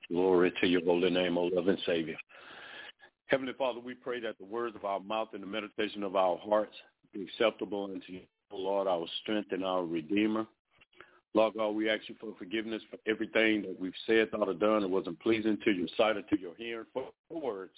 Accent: American